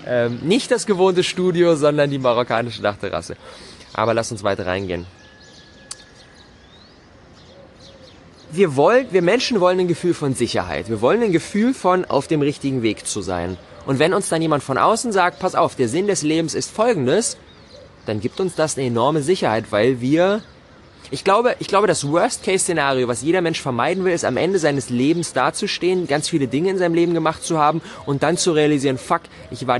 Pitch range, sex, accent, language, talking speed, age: 120-170 Hz, male, German, German, 185 wpm, 20-39